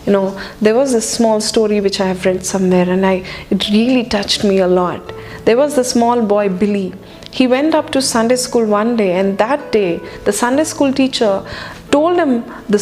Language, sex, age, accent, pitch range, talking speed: Telugu, female, 30-49, native, 205-260 Hz, 205 wpm